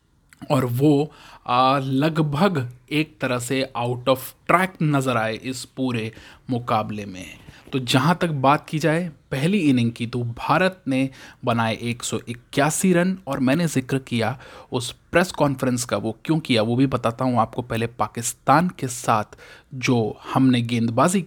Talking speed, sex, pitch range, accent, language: 150 wpm, male, 120-155 Hz, native, Hindi